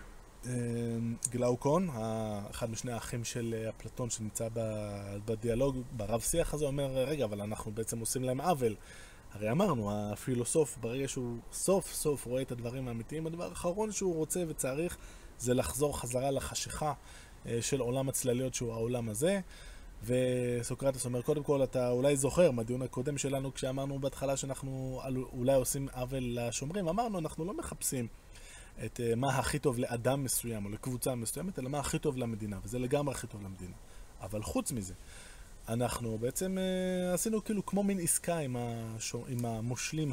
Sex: male